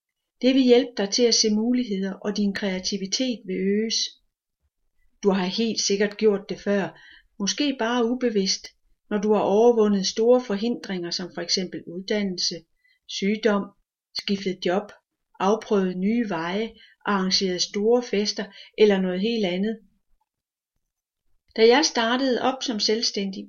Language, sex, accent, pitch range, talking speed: Danish, female, native, 200-240 Hz, 130 wpm